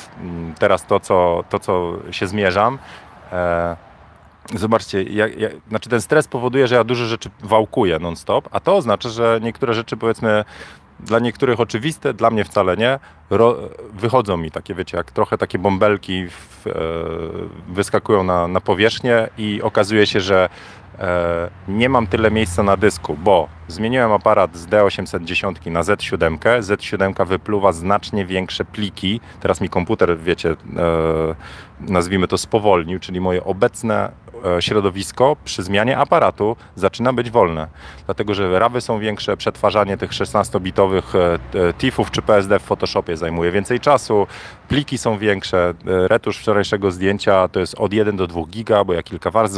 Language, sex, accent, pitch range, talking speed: Polish, male, native, 90-110 Hz, 145 wpm